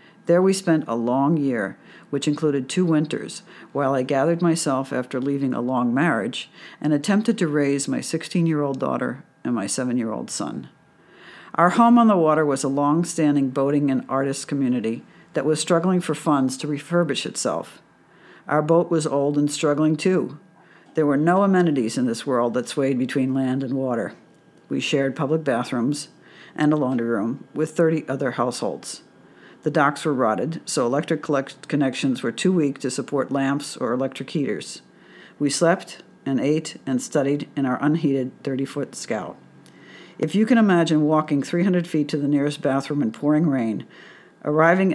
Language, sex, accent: English, female, American